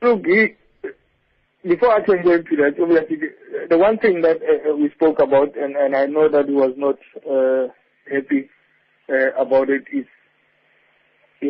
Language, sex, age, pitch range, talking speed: English, male, 50-69, 135-175 Hz, 155 wpm